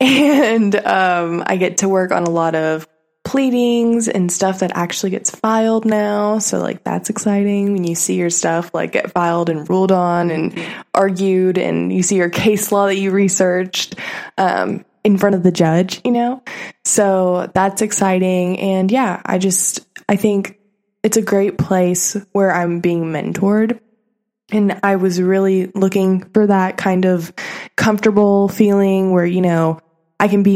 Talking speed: 170 wpm